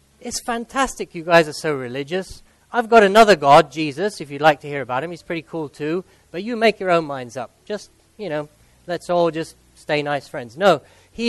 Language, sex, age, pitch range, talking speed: English, male, 40-59, 130-195 Hz, 220 wpm